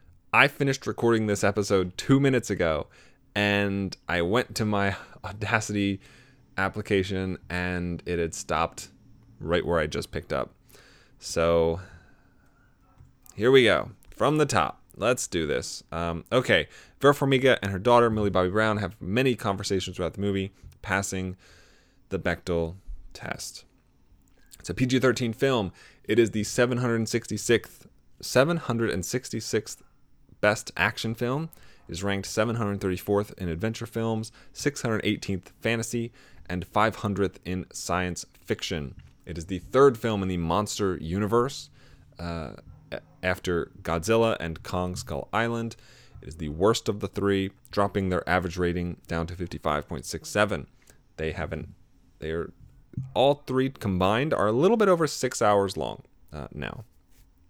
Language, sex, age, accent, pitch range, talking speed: English, male, 20-39, American, 90-115 Hz, 135 wpm